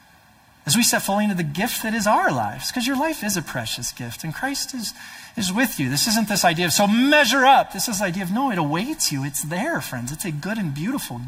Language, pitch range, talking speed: English, 140-185 Hz, 260 wpm